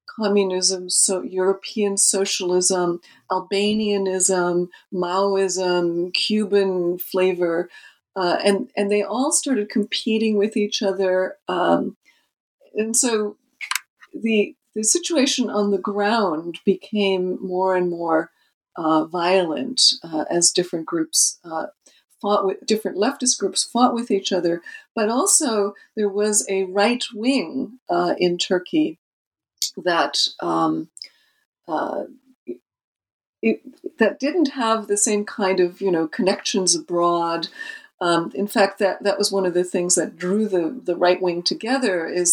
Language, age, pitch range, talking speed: English, 50-69, 180-225 Hz, 130 wpm